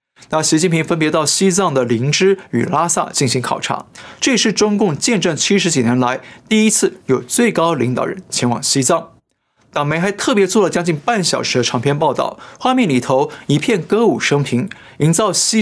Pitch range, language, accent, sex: 135-190 Hz, Chinese, native, male